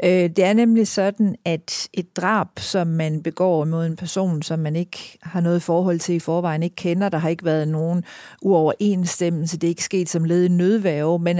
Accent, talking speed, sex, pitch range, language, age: native, 200 wpm, female, 165-195 Hz, Danish, 50-69